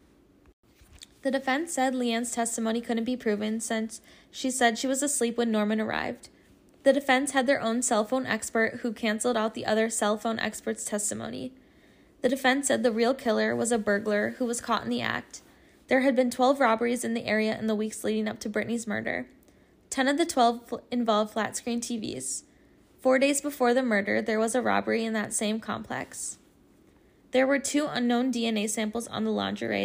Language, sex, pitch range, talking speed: English, female, 220-255 Hz, 190 wpm